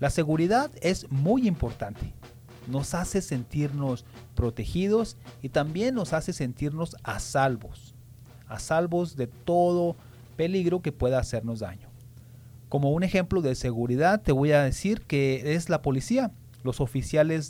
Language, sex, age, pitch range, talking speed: English, male, 40-59, 120-150 Hz, 135 wpm